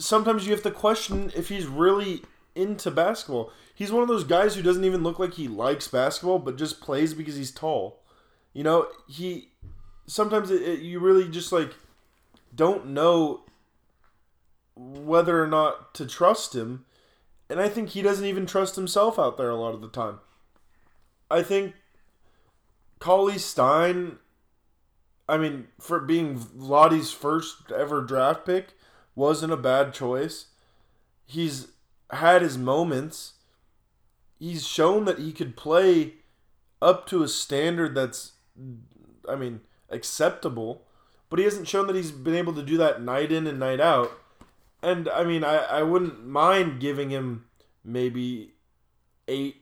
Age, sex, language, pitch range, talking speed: 20-39, male, English, 125-175 Hz, 150 wpm